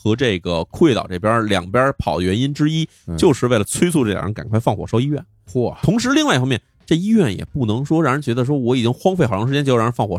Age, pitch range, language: 20-39, 95-140 Hz, Chinese